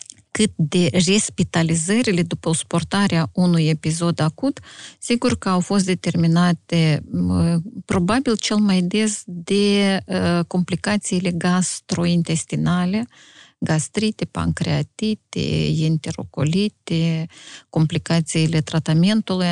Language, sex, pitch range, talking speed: Romanian, female, 155-190 Hz, 75 wpm